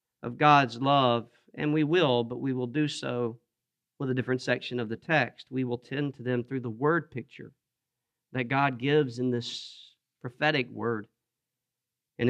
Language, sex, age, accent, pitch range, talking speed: English, male, 40-59, American, 120-145 Hz, 170 wpm